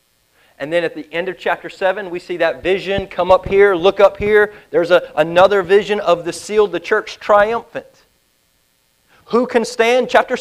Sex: male